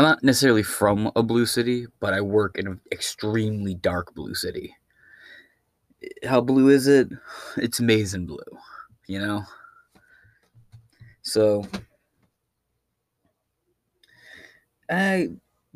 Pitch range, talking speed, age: 100-120 Hz, 105 wpm, 20-39